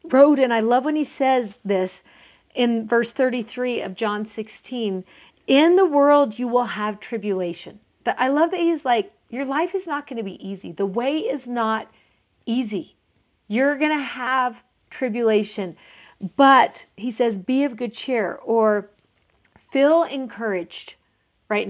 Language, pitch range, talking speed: English, 205-255 Hz, 150 wpm